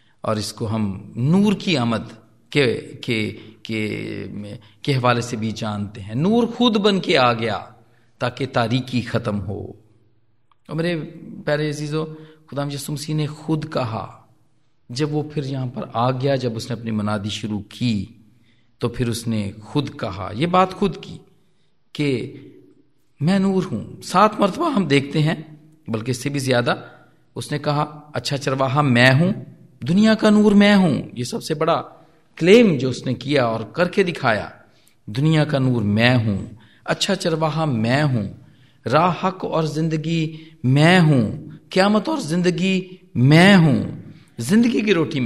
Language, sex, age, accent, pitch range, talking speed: Hindi, male, 40-59, native, 115-160 Hz, 150 wpm